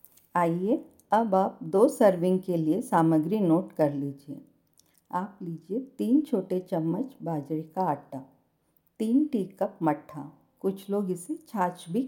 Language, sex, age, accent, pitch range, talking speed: Hindi, female, 50-69, native, 170-235 Hz, 140 wpm